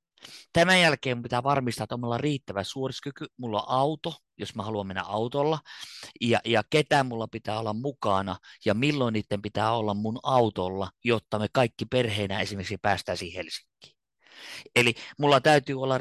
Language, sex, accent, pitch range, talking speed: Finnish, male, native, 105-140 Hz, 165 wpm